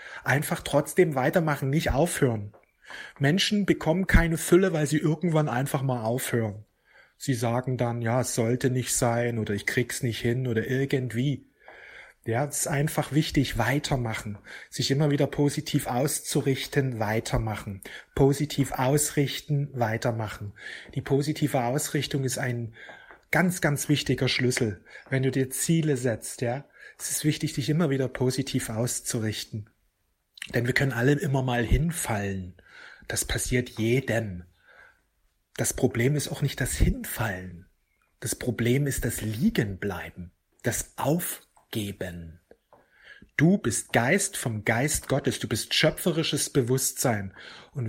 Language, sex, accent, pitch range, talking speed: German, male, German, 115-150 Hz, 130 wpm